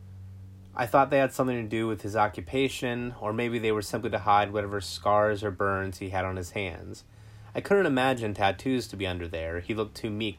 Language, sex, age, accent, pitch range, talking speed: English, male, 30-49, American, 95-125 Hz, 220 wpm